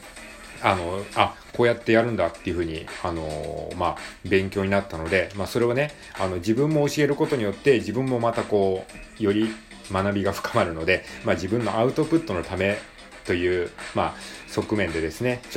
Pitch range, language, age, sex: 90-145 Hz, Japanese, 30-49, male